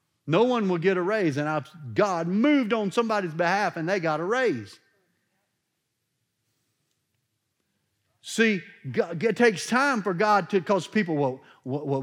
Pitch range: 155-220 Hz